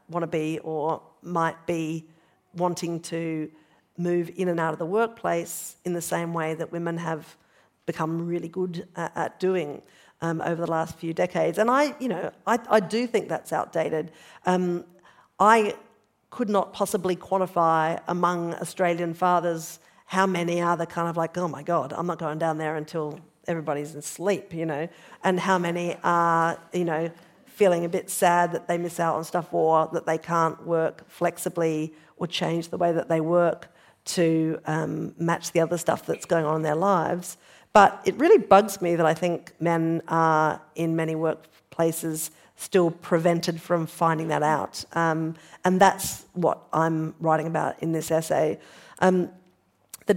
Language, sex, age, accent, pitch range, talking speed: English, female, 50-69, Australian, 160-180 Hz, 170 wpm